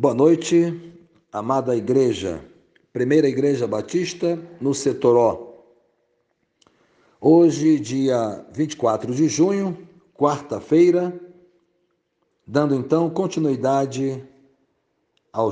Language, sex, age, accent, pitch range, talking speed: Portuguese, male, 60-79, Brazilian, 125-170 Hz, 75 wpm